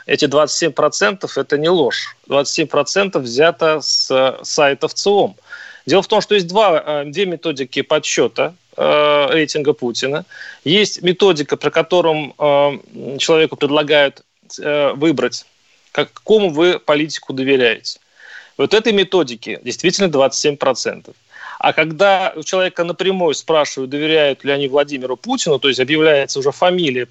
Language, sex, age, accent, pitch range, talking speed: Russian, male, 30-49, native, 145-195 Hz, 120 wpm